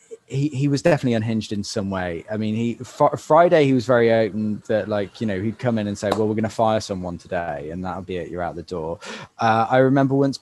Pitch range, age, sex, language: 115-155 Hz, 20-39, male, English